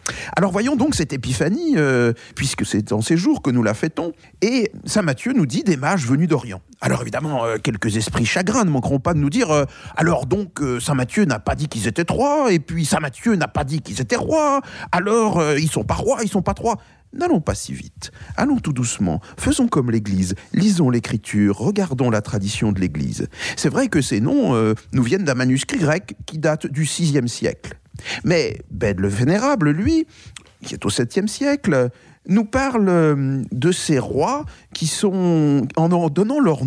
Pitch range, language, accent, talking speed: 130-200 Hz, French, French, 205 wpm